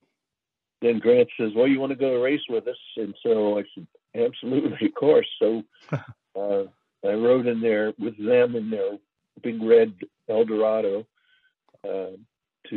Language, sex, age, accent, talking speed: English, male, 60-79, American, 160 wpm